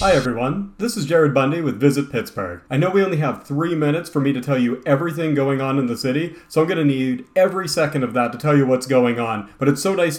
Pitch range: 130-170 Hz